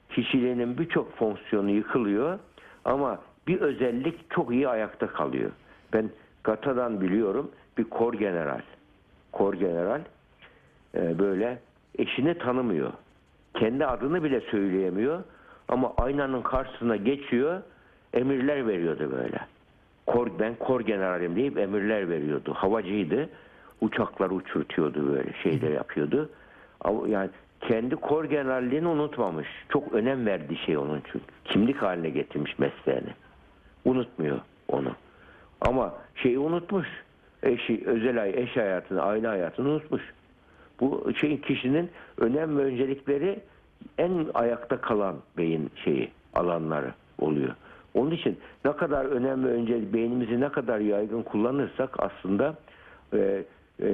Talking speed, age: 110 wpm, 60-79